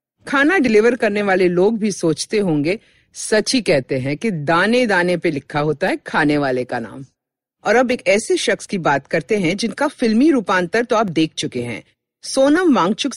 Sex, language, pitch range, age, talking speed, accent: female, Hindi, 160-255 Hz, 50-69, 190 wpm, native